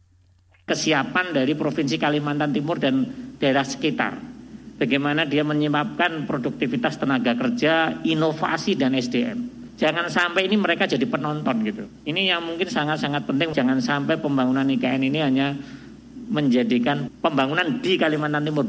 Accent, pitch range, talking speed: native, 140-225 Hz, 130 wpm